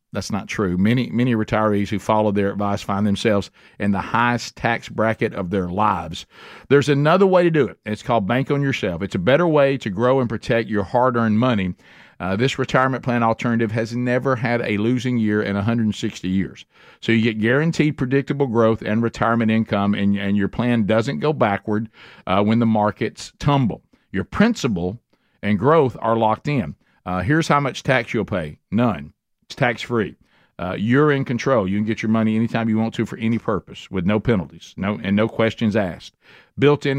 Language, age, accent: English, 50-69, American